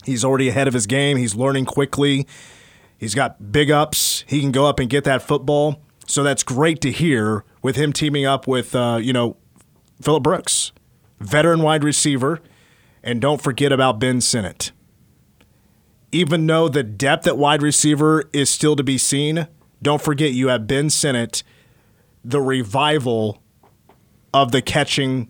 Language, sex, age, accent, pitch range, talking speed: English, male, 30-49, American, 120-145 Hz, 160 wpm